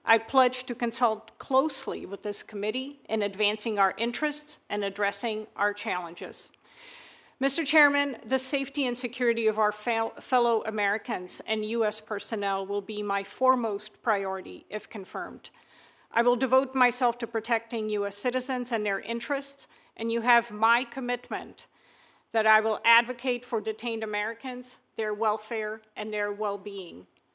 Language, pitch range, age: English, 210-250 Hz, 50-69